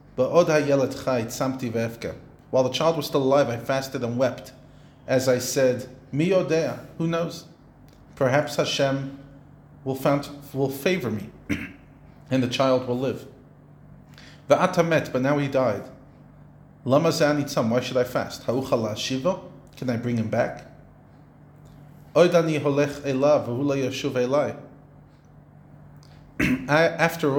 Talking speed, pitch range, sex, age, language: 90 wpm, 115-145 Hz, male, 40-59, English